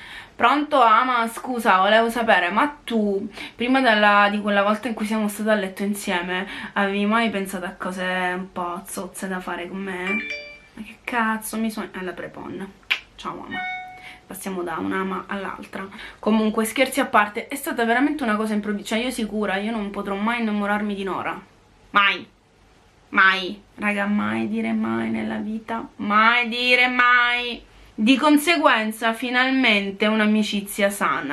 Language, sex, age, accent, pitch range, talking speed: Italian, female, 20-39, native, 200-255 Hz, 155 wpm